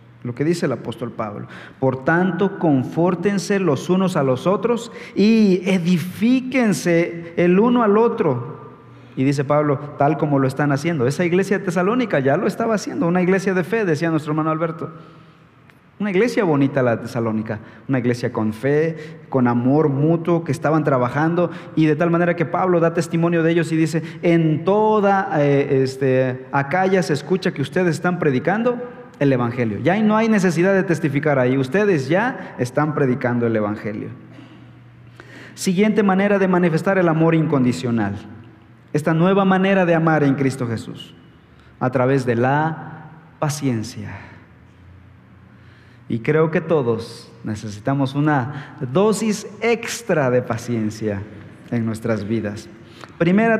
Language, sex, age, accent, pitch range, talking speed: Spanish, male, 40-59, Mexican, 125-180 Hz, 145 wpm